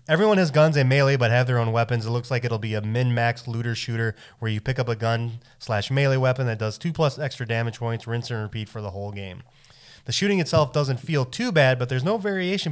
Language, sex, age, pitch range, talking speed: English, male, 20-39, 110-135 Hz, 250 wpm